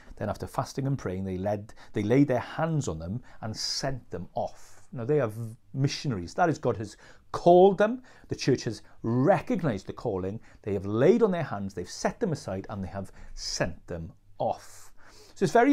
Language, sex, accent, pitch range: English, male, British, 95-135 Hz